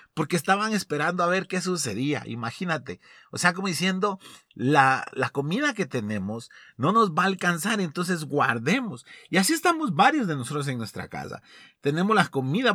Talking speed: 170 wpm